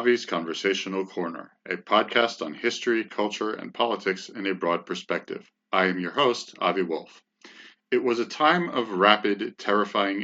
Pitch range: 90-105 Hz